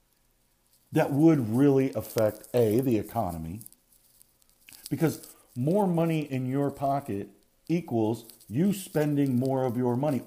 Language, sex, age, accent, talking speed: English, male, 50-69, American, 115 wpm